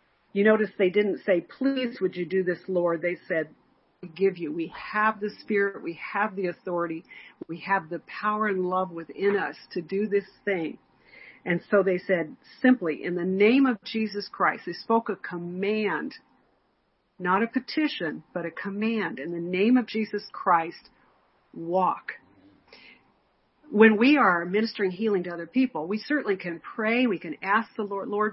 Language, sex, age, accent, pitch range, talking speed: English, female, 50-69, American, 180-225 Hz, 175 wpm